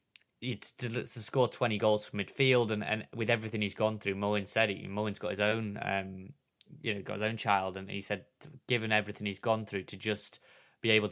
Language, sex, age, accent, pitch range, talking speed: English, male, 20-39, British, 100-115 Hz, 215 wpm